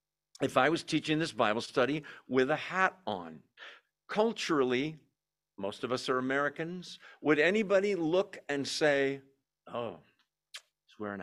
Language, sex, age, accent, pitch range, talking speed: English, male, 50-69, American, 130-170 Hz, 135 wpm